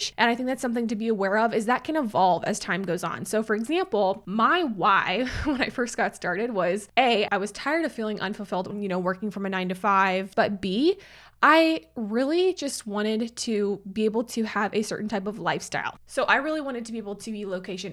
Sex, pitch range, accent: female, 200-245 Hz, American